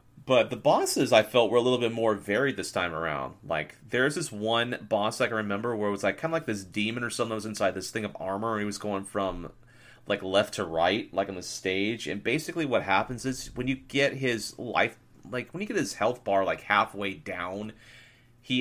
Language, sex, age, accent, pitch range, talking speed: English, male, 30-49, American, 100-120 Hz, 240 wpm